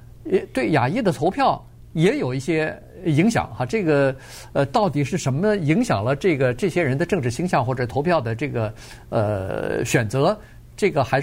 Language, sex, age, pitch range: Chinese, male, 50-69, 120-175 Hz